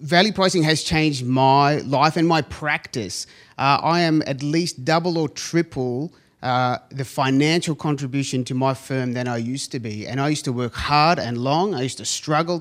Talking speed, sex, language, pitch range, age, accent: 195 wpm, male, English, 125-155 Hz, 30-49, Australian